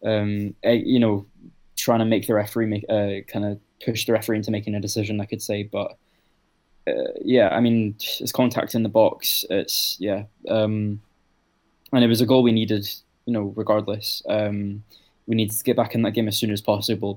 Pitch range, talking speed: 105-115 Hz, 195 wpm